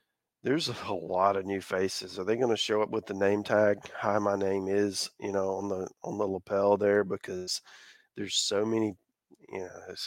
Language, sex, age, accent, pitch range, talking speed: English, male, 40-59, American, 100-125 Hz, 210 wpm